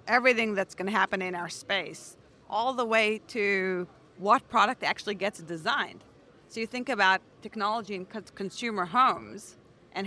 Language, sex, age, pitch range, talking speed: English, female, 40-59, 185-220 Hz, 155 wpm